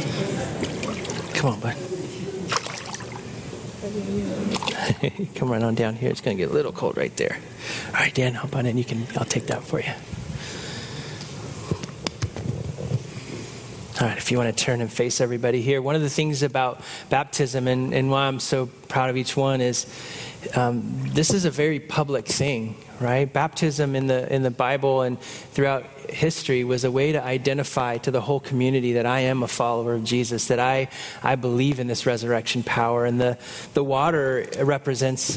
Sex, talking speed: male, 175 wpm